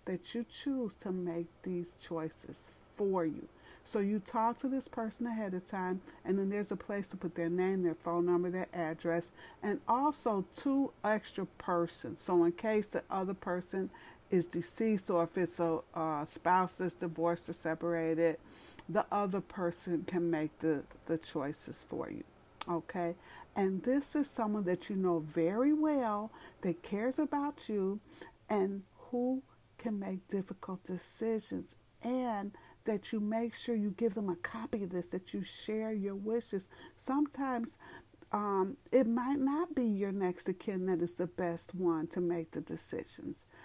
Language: English